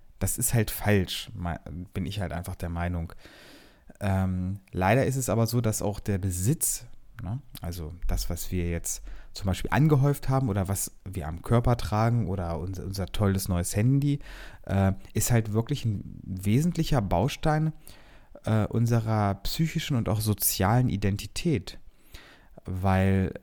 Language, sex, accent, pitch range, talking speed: German, male, German, 95-115 Hz, 145 wpm